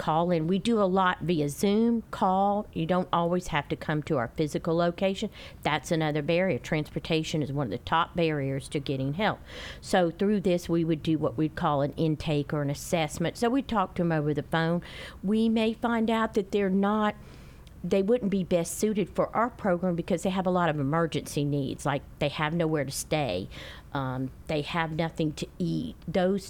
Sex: female